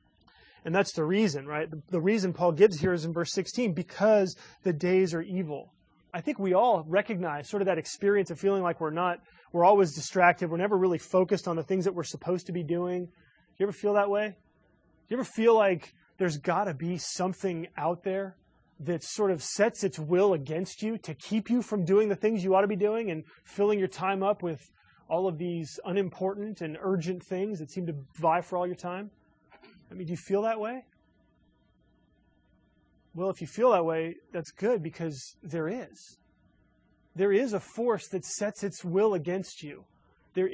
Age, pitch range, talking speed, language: 20-39, 170-205 Hz, 205 wpm, English